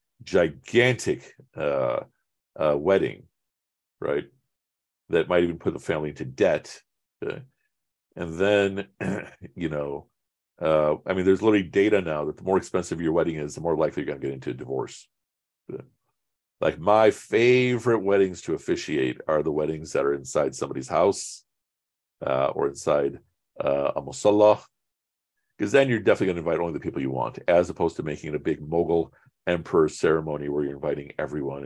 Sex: male